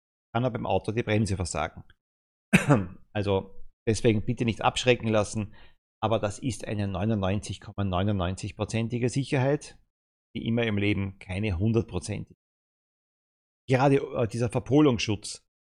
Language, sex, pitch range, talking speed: German, male, 95-125 Hz, 115 wpm